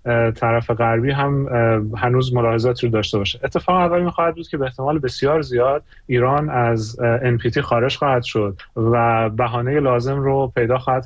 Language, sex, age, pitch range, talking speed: Persian, male, 30-49, 115-140 Hz, 155 wpm